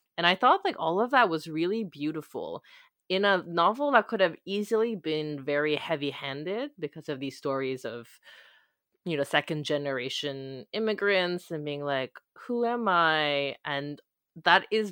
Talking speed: 155 wpm